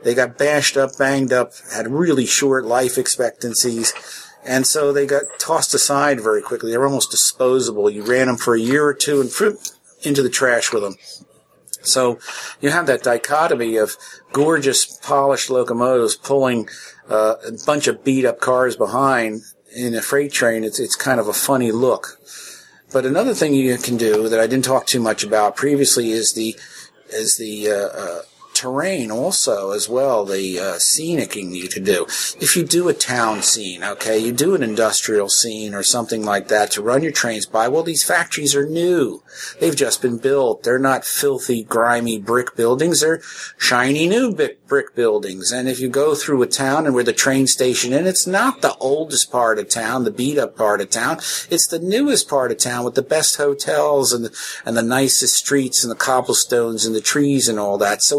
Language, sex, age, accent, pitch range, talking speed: English, male, 50-69, American, 115-145 Hz, 195 wpm